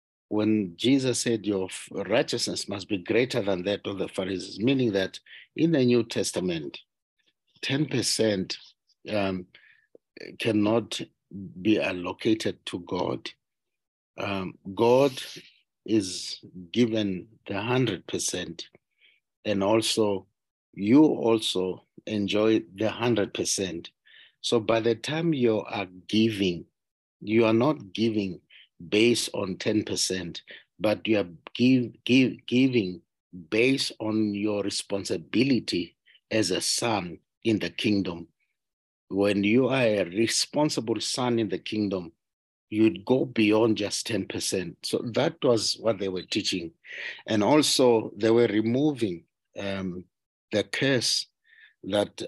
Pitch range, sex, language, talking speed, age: 100-120 Hz, male, English, 115 wpm, 60-79